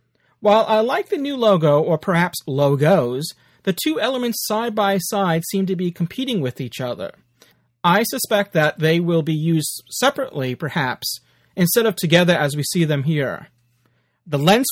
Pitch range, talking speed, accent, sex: 150-210 Hz, 165 wpm, American, male